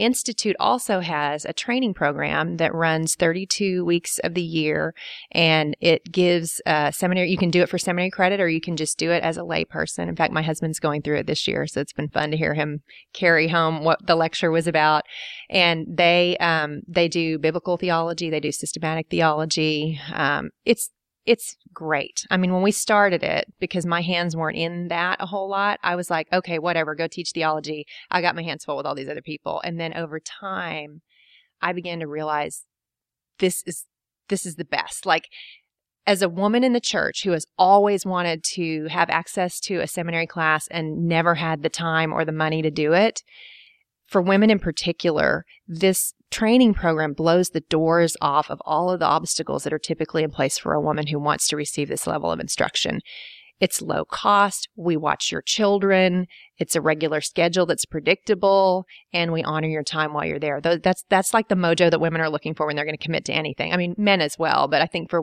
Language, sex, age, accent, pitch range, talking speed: English, female, 30-49, American, 155-180 Hz, 210 wpm